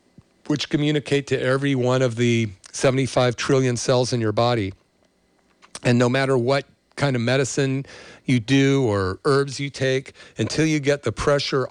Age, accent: 50-69, American